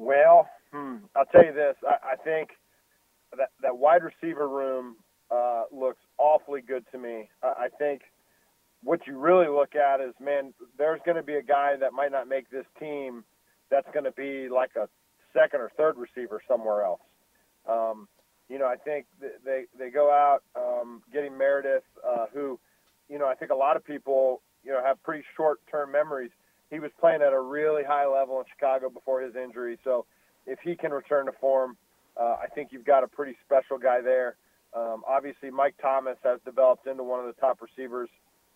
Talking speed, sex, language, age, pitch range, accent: 195 wpm, male, English, 40-59, 125-145 Hz, American